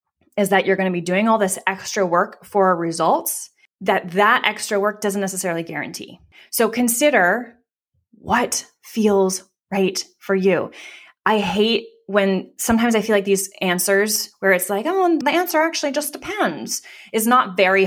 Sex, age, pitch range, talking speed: female, 20-39, 185-230 Hz, 160 wpm